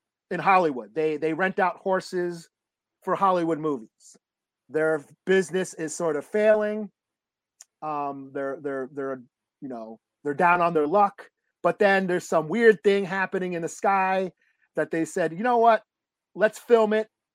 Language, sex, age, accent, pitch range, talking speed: English, male, 30-49, American, 145-190 Hz, 160 wpm